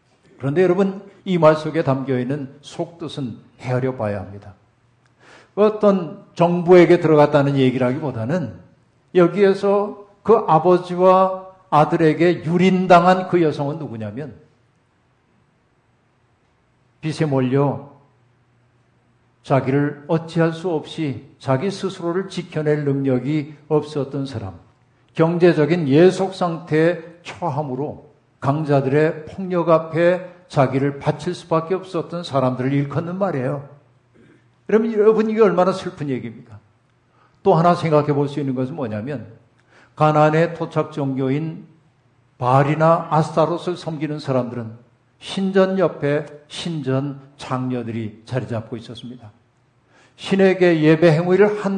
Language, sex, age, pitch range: Korean, male, 50-69, 130-175 Hz